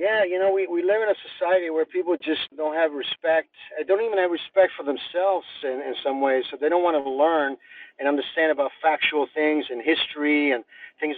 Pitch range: 140-180 Hz